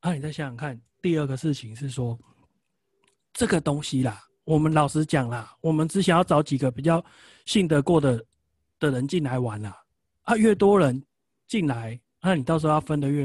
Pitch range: 135-175 Hz